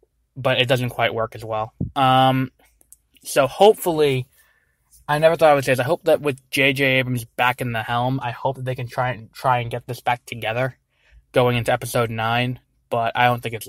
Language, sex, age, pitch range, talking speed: English, male, 20-39, 120-135 Hz, 215 wpm